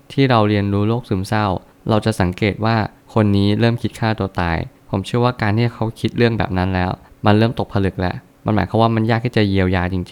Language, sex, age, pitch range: Thai, male, 20-39, 95-115 Hz